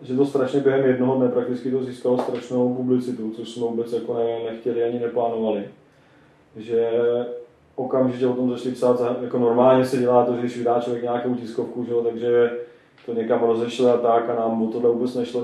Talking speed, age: 190 wpm, 20-39